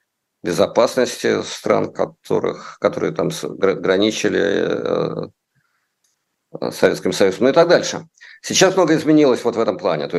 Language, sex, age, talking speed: Russian, male, 50-69, 120 wpm